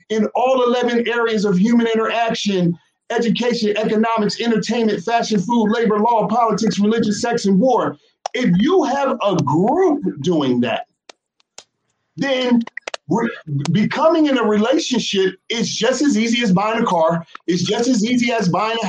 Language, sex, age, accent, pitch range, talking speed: English, male, 40-59, American, 210-265 Hz, 145 wpm